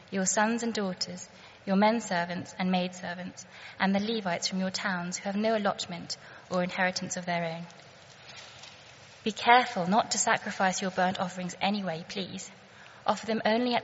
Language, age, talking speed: English, 20-39, 170 wpm